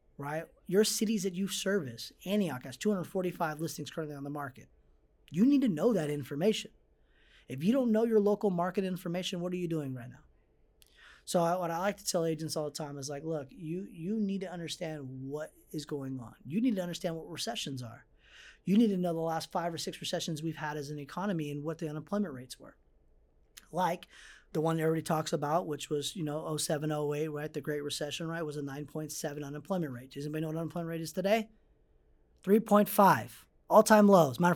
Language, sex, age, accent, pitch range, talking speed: English, male, 30-49, American, 145-190 Hz, 205 wpm